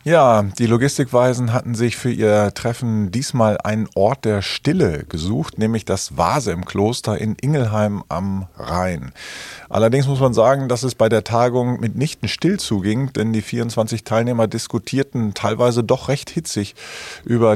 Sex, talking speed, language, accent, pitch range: male, 155 wpm, German, German, 100-120 Hz